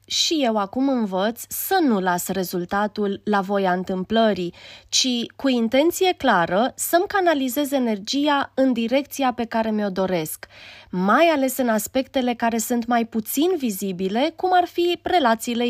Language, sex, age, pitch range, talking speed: Romanian, female, 20-39, 195-275 Hz, 140 wpm